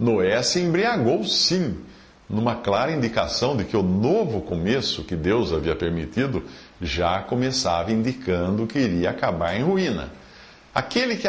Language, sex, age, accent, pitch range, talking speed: Portuguese, male, 50-69, Brazilian, 105-170 Hz, 140 wpm